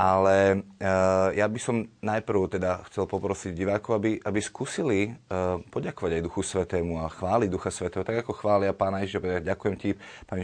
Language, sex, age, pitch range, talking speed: Slovak, male, 30-49, 95-110 Hz, 180 wpm